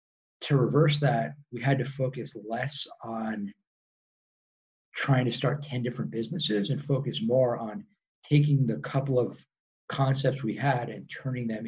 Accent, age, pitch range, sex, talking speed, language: American, 50-69, 110-140 Hz, male, 150 wpm, English